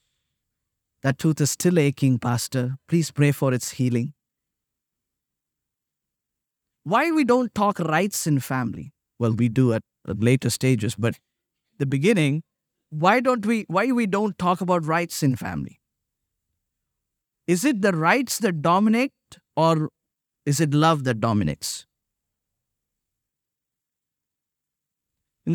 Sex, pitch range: male, 140-210 Hz